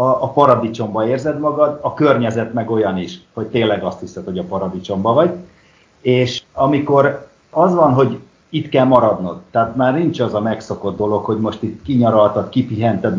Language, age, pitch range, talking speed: Hungarian, 50-69, 105-135 Hz, 170 wpm